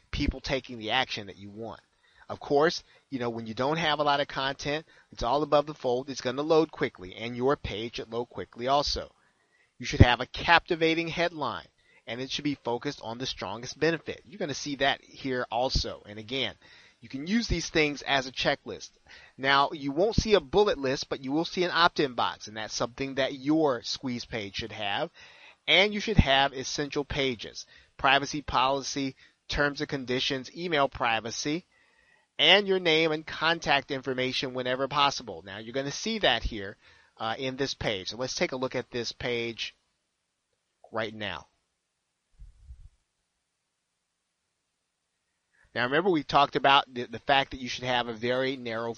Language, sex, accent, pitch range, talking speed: English, male, American, 120-145 Hz, 180 wpm